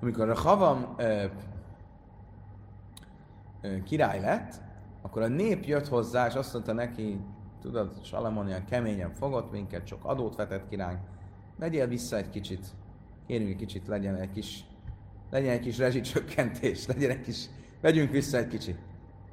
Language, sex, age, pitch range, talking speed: Hungarian, male, 30-49, 100-140 Hz, 125 wpm